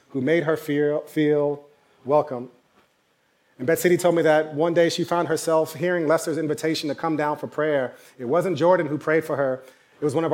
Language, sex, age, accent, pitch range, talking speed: English, male, 30-49, American, 145-165 Hz, 205 wpm